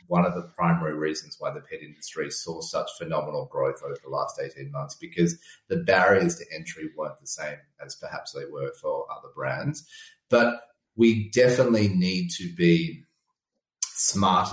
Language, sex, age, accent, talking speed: English, male, 30-49, Australian, 165 wpm